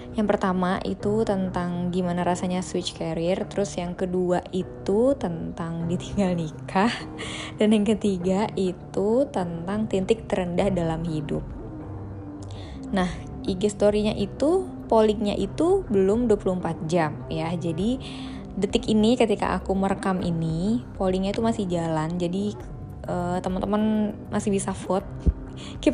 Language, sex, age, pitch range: Indonesian, female, 20-39, 170-210 Hz